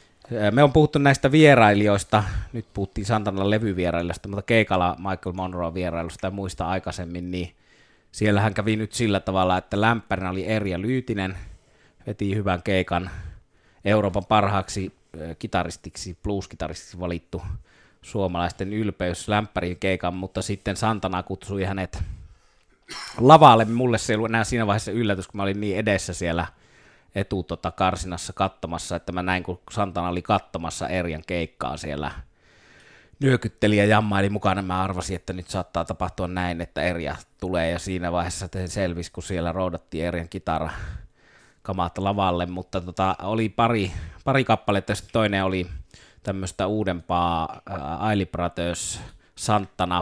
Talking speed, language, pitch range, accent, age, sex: 135 wpm, Finnish, 90-105 Hz, native, 20-39, male